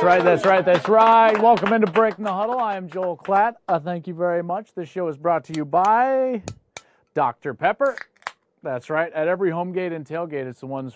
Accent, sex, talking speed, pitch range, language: American, male, 220 wpm, 140-195 Hz, English